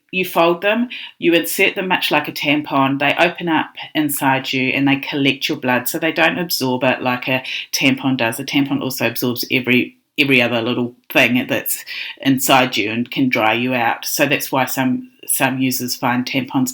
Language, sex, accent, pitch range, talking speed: English, female, Australian, 135-185 Hz, 195 wpm